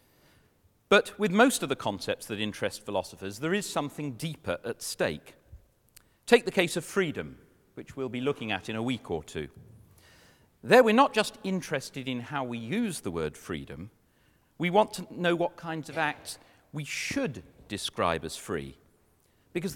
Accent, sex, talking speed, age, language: British, male, 170 wpm, 40-59, English